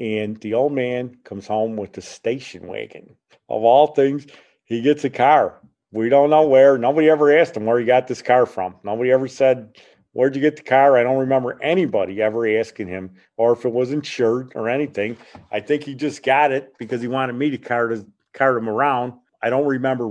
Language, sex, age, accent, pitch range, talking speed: English, male, 40-59, American, 105-130 Hz, 215 wpm